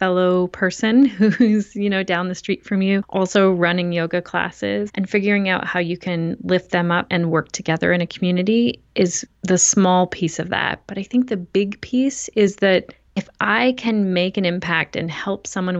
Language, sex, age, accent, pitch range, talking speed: English, female, 30-49, American, 180-205 Hz, 200 wpm